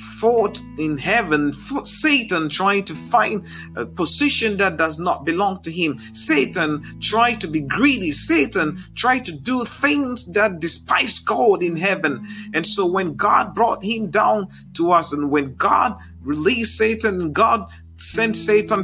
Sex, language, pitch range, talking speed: male, Finnish, 170-235 Hz, 155 wpm